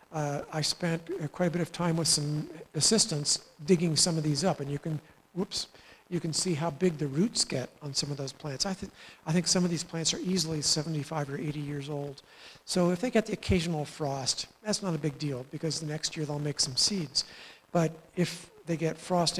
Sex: male